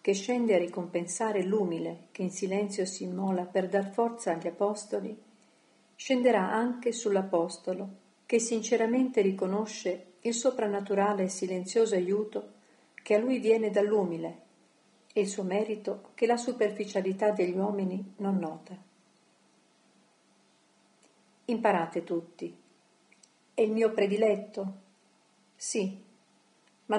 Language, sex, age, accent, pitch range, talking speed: Italian, female, 50-69, native, 185-225 Hz, 110 wpm